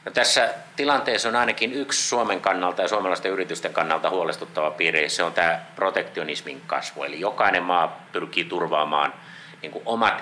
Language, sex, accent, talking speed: Finnish, male, native, 160 wpm